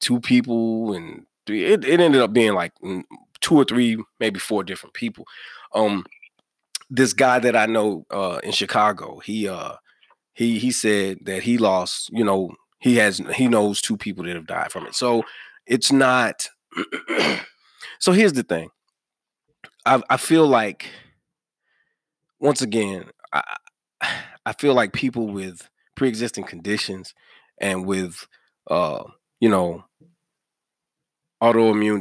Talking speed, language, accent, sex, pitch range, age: 140 wpm, English, American, male, 95-125 Hz, 20-39